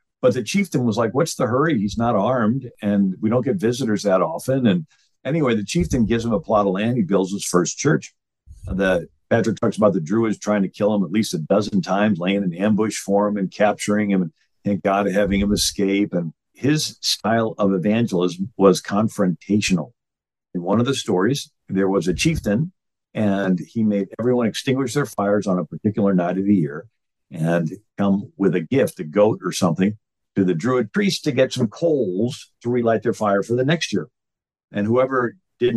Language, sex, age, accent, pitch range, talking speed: English, male, 50-69, American, 95-115 Hz, 200 wpm